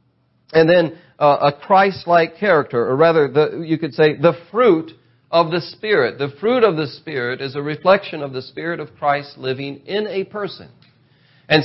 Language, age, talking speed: English, 40-59, 180 wpm